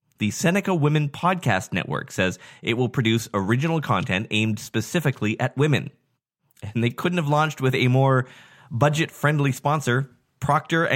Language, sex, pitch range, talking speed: English, male, 105-145 Hz, 140 wpm